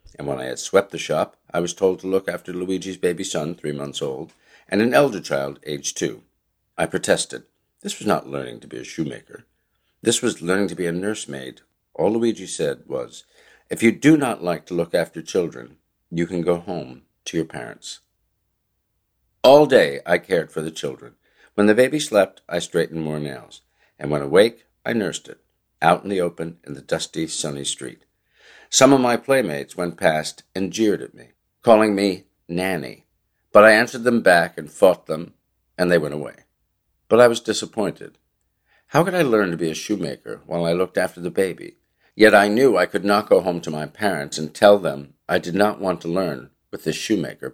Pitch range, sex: 75-100 Hz, male